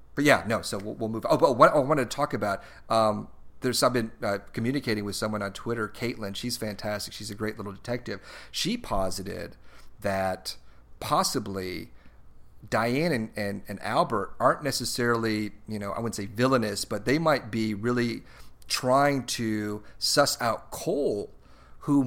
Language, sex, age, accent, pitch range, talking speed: English, male, 40-59, American, 105-120 Hz, 165 wpm